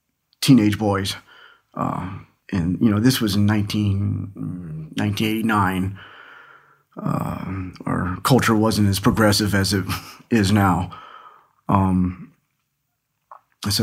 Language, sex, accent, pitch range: English, male, American, 100-115 Hz